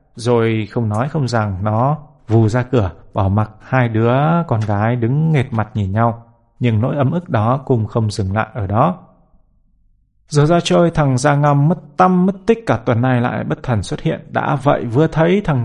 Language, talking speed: Vietnamese, 205 wpm